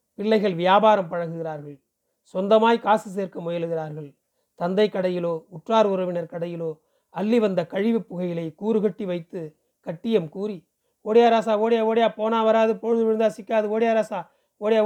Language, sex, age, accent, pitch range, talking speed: Tamil, male, 40-59, native, 180-225 Hz, 120 wpm